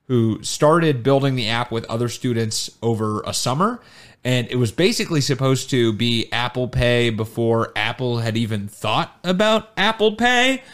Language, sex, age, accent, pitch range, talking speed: English, male, 30-49, American, 115-160 Hz, 155 wpm